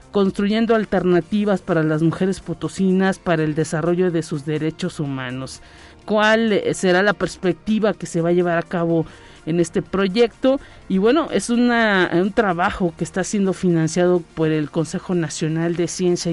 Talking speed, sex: 155 wpm, male